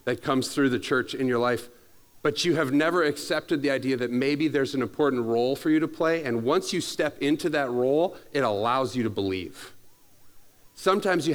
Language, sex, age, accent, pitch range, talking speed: English, male, 40-59, American, 130-185 Hz, 205 wpm